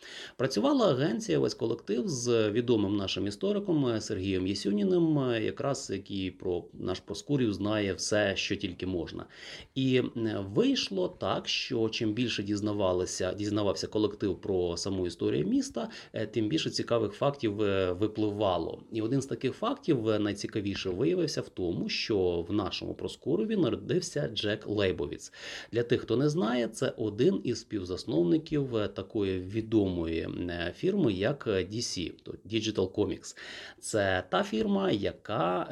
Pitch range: 100-130 Hz